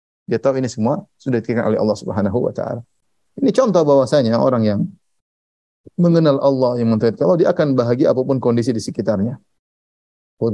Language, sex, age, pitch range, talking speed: Indonesian, male, 30-49, 110-155 Hz, 165 wpm